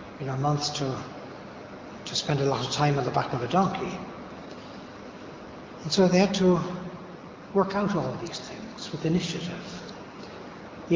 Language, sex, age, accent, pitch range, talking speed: English, male, 60-79, Irish, 155-190 Hz, 165 wpm